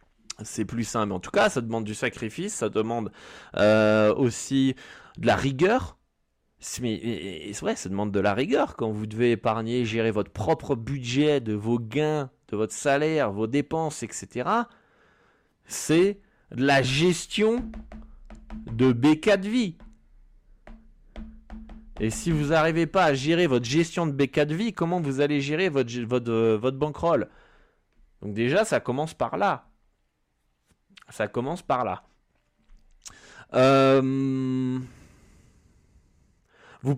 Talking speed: 130 wpm